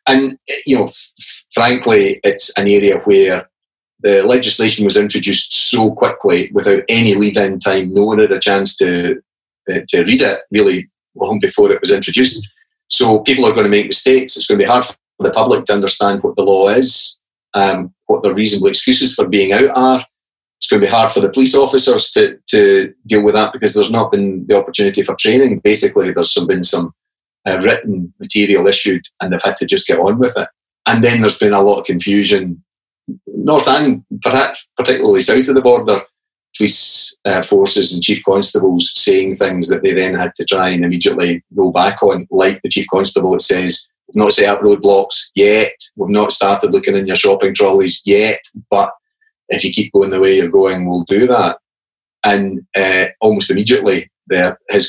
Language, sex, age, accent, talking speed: English, male, 30-49, British, 195 wpm